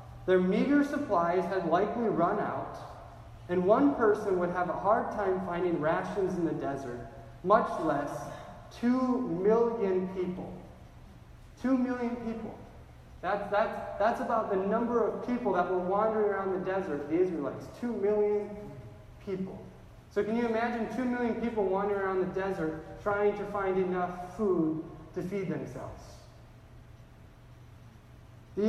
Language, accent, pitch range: English, American, 175-210 Hz